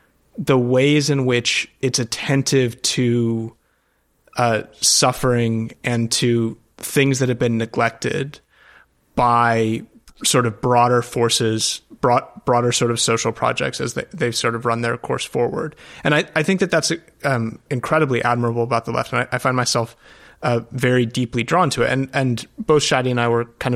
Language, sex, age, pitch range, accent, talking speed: English, male, 30-49, 120-140 Hz, American, 170 wpm